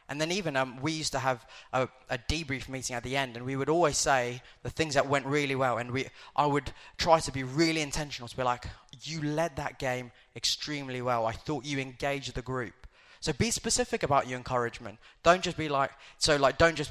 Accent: British